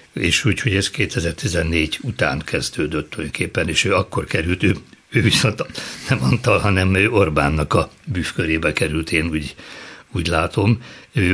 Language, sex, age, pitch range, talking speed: Hungarian, male, 60-79, 80-105 Hz, 150 wpm